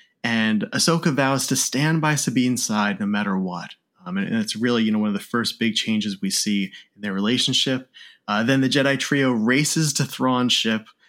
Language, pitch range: English, 110-140 Hz